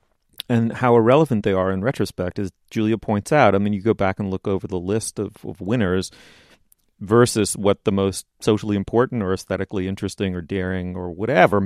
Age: 40-59